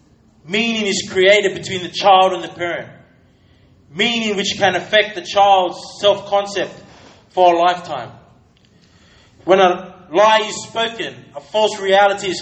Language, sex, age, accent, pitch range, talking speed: English, male, 20-39, Australian, 145-195 Hz, 135 wpm